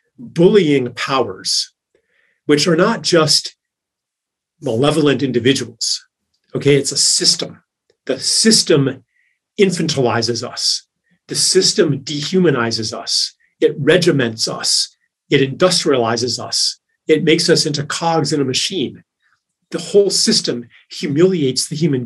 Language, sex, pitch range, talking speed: English, male, 135-185 Hz, 110 wpm